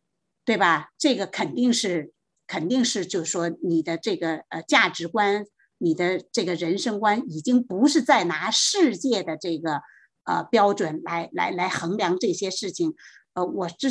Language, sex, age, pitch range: Chinese, female, 50-69, 175-265 Hz